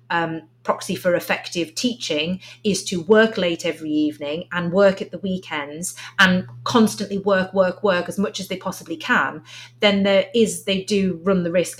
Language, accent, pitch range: English, British, 155-195 Hz